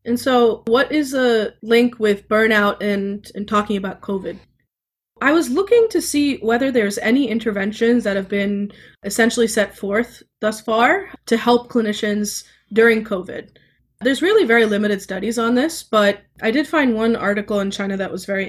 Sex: female